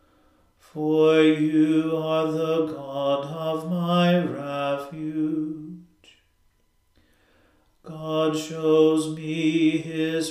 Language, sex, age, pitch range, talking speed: English, male, 40-59, 155-160 Hz, 70 wpm